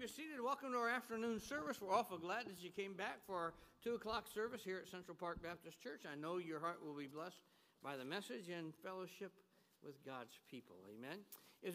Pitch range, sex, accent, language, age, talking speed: 145-190 Hz, male, American, English, 60-79, 215 wpm